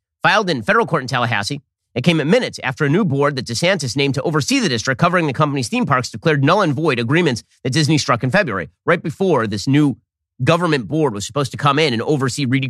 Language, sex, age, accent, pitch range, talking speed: English, male, 30-49, American, 120-160 Hz, 235 wpm